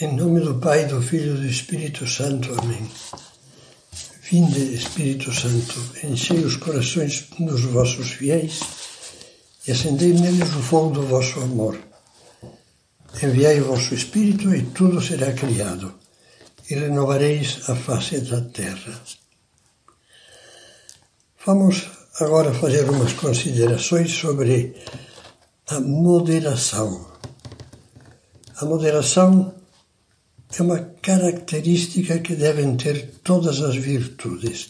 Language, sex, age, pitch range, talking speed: Portuguese, male, 60-79, 125-170 Hz, 105 wpm